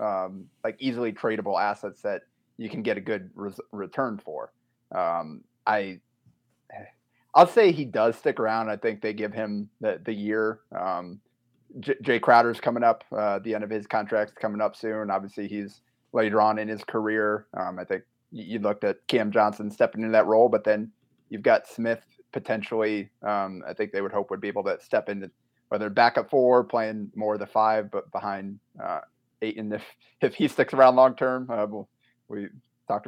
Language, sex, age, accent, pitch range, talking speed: English, male, 30-49, American, 105-120 Hz, 185 wpm